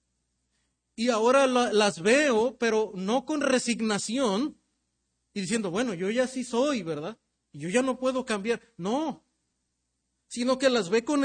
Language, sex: Spanish, male